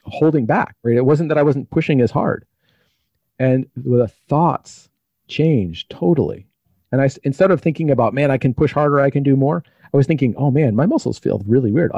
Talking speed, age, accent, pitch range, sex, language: 205 wpm, 40-59, American, 110-145 Hz, male, English